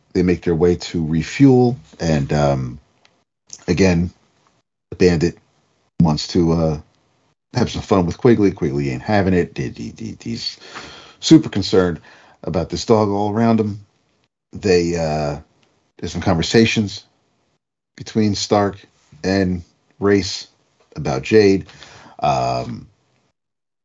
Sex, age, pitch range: male, 50-69, 80-110 Hz